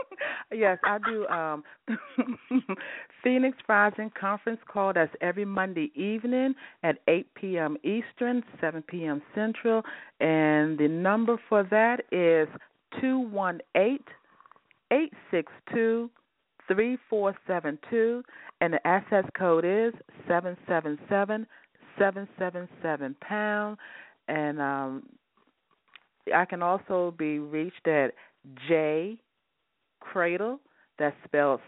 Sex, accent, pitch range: female, American, 160-235 Hz